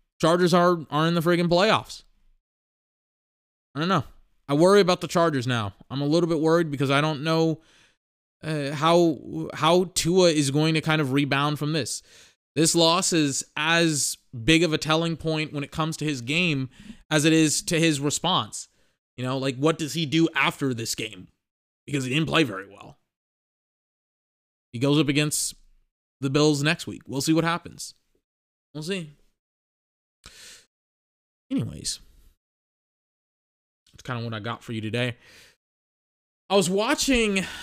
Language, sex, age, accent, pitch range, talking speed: English, male, 20-39, American, 130-165 Hz, 160 wpm